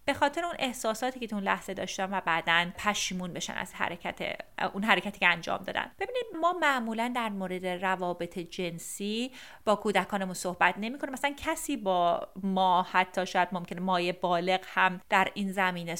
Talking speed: 160 wpm